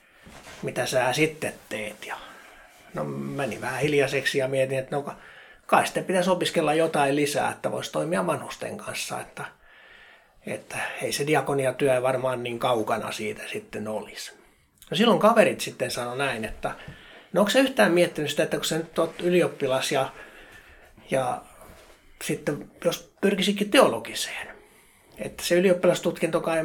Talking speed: 145 wpm